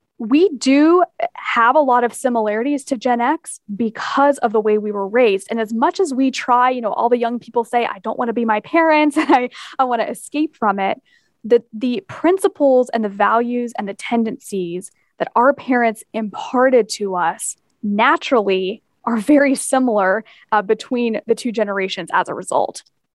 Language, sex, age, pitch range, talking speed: English, female, 10-29, 215-270 Hz, 185 wpm